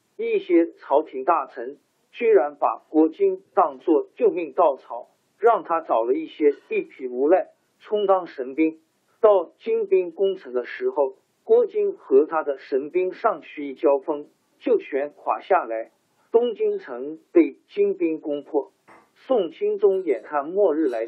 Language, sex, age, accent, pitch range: Chinese, male, 50-69, native, 340-415 Hz